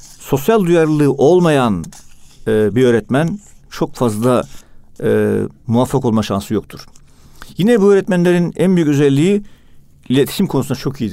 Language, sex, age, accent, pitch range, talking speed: Turkish, male, 50-69, native, 115-155 Hz, 110 wpm